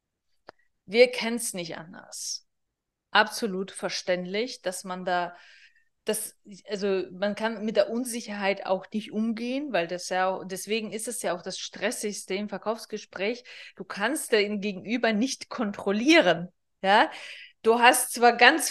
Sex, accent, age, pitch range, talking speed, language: female, German, 20-39, 200-245 Hz, 140 wpm, German